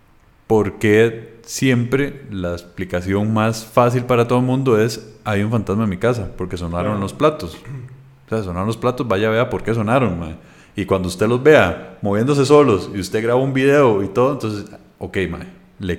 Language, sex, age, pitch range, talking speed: Spanish, male, 30-49, 105-130 Hz, 190 wpm